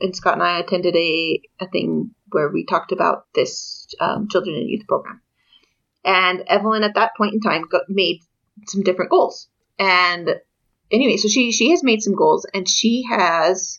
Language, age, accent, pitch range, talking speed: English, 30-49, American, 185-225 Hz, 180 wpm